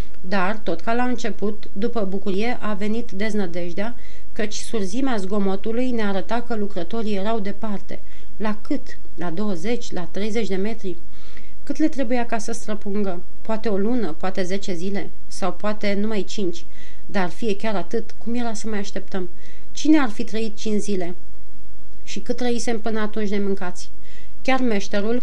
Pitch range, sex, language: 195-230 Hz, female, Romanian